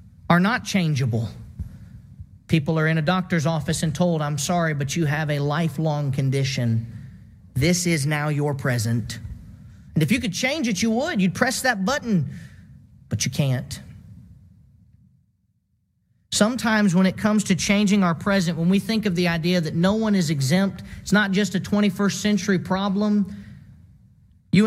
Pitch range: 115-185 Hz